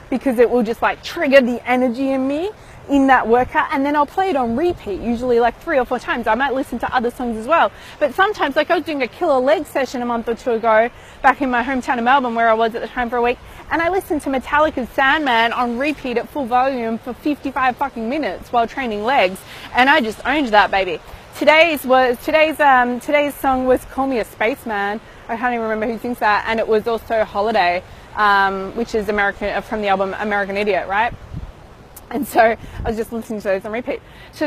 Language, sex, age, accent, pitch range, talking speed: English, female, 20-39, Australian, 205-270 Hz, 230 wpm